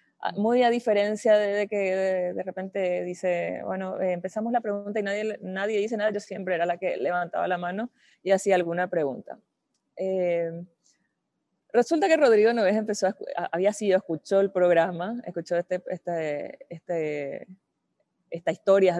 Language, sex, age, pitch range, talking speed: Spanish, female, 20-39, 180-225 Hz, 150 wpm